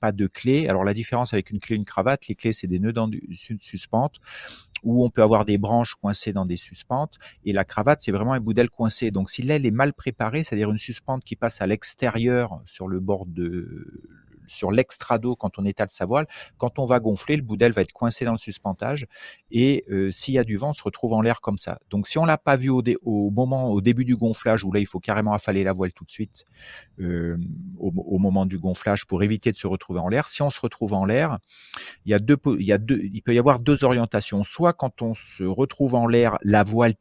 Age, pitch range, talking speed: 40-59, 100-125 Hz, 255 wpm